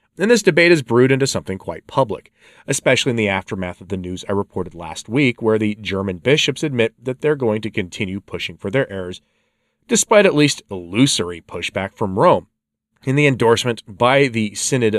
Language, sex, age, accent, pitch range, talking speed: English, male, 30-49, American, 100-135 Hz, 190 wpm